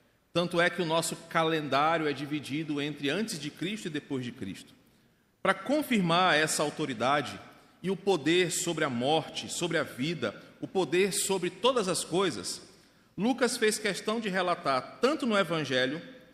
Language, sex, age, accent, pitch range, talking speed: Portuguese, male, 40-59, Brazilian, 165-210 Hz, 160 wpm